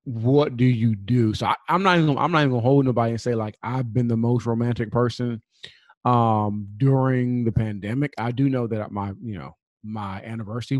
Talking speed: 205 wpm